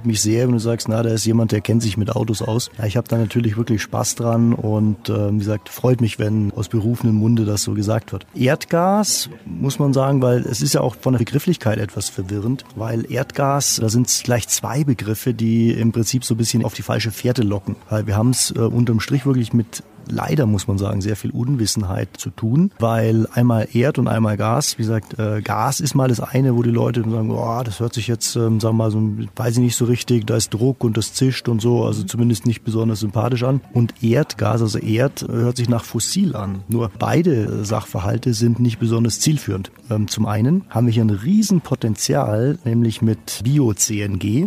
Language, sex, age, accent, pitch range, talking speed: German, male, 30-49, German, 110-125 Hz, 210 wpm